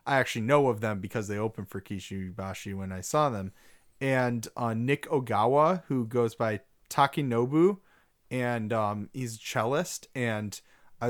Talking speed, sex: 155 wpm, male